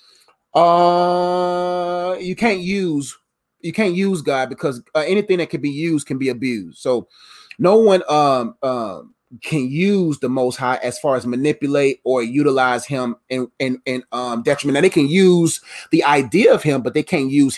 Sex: male